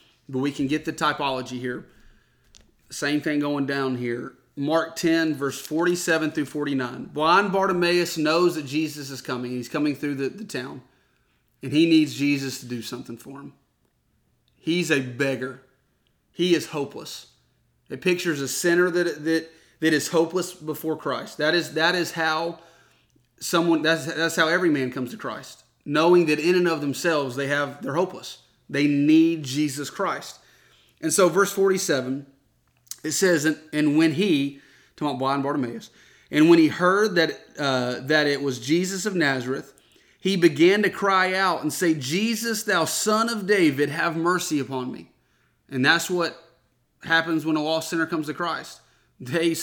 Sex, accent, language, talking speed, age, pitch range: male, American, English, 165 wpm, 30-49, 140-170 Hz